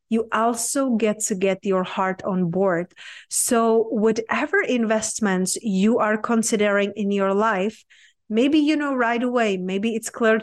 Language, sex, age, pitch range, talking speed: English, female, 30-49, 200-245 Hz, 150 wpm